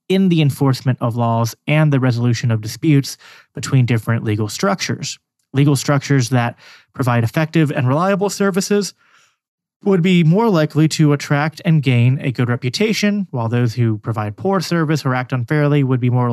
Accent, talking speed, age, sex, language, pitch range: American, 165 wpm, 30-49, male, English, 125-155 Hz